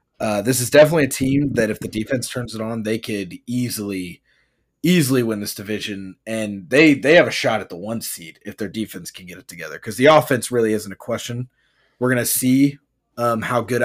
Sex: male